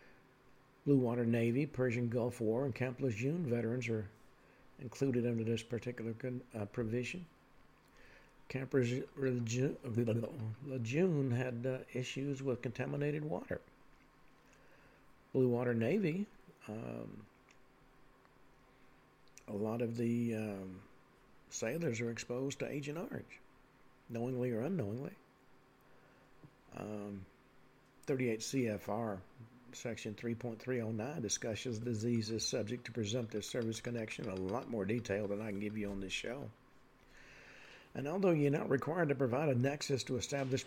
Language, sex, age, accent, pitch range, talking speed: English, male, 60-79, American, 115-135 Hz, 120 wpm